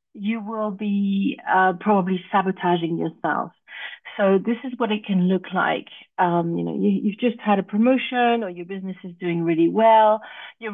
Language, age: English, 50-69